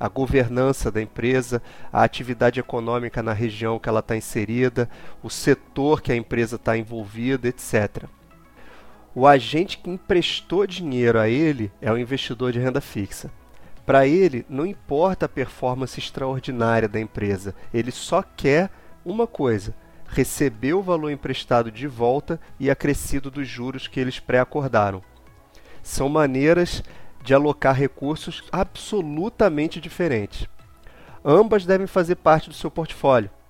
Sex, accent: male, Brazilian